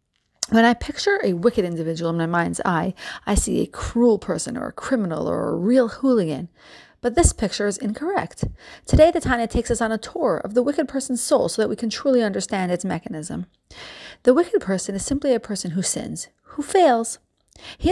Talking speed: 205 wpm